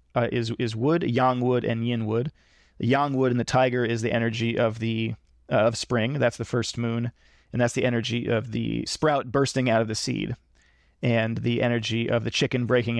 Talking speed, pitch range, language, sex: 210 wpm, 115-130 Hz, English, male